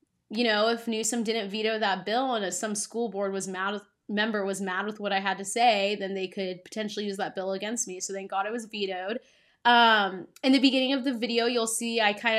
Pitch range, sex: 195-225 Hz, female